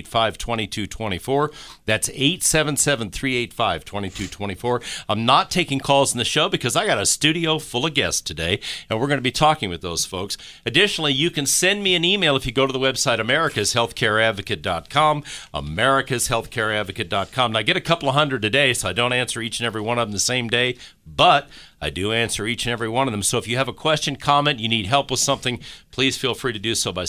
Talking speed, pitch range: 245 wpm, 105-145 Hz